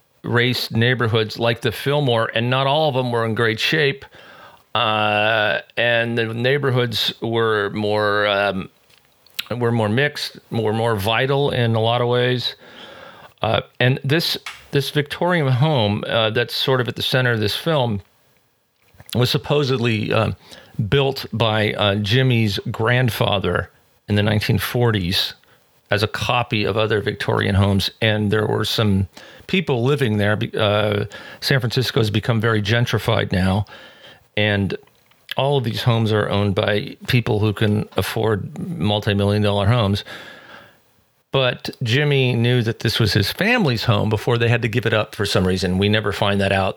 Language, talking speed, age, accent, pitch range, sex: English, 155 wpm, 40-59, American, 105-130 Hz, male